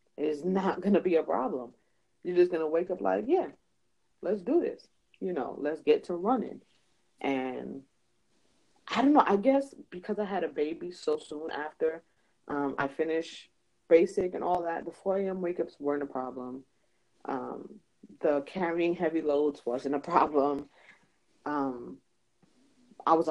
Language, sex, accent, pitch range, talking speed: English, female, American, 140-190 Hz, 160 wpm